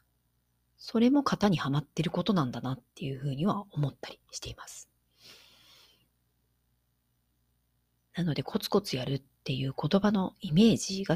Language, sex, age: Japanese, female, 40-59